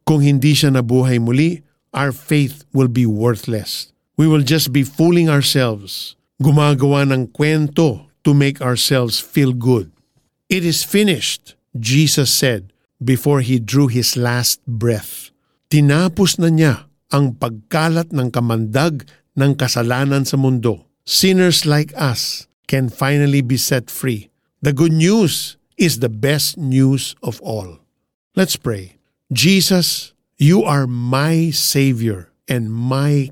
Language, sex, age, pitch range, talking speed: Filipino, male, 50-69, 120-150 Hz, 130 wpm